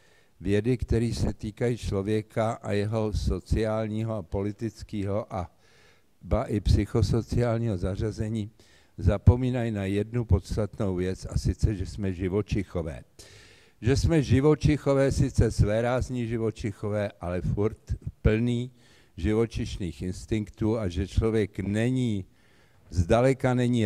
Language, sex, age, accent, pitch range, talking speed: Czech, male, 50-69, native, 100-115 Hz, 105 wpm